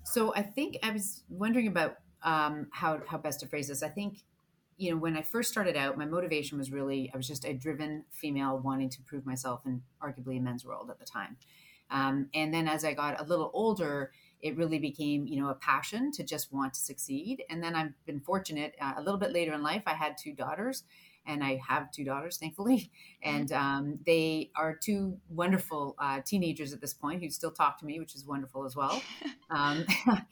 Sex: female